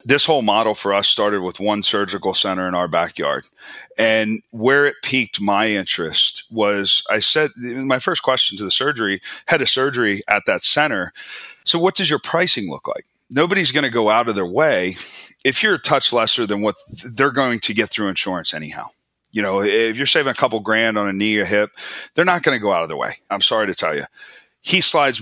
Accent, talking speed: American, 220 wpm